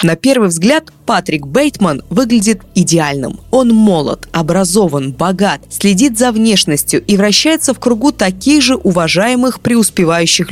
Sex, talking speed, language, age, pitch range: female, 125 wpm, Russian, 20-39, 170-220 Hz